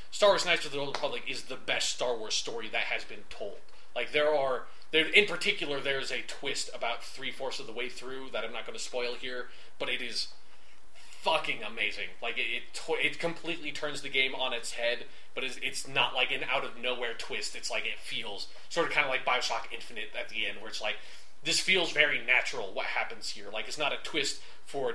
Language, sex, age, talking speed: English, male, 20-39, 230 wpm